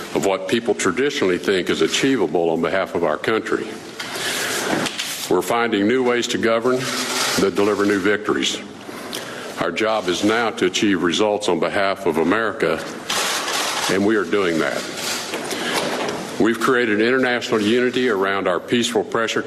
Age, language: 50-69, English